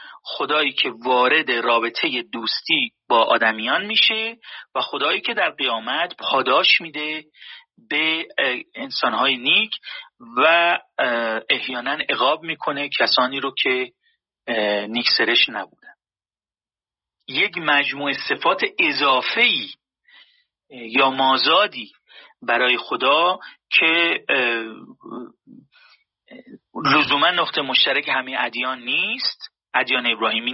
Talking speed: 90 wpm